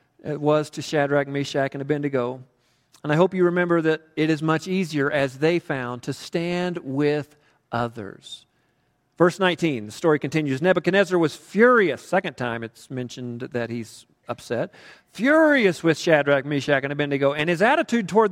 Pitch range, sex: 150-215 Hz, male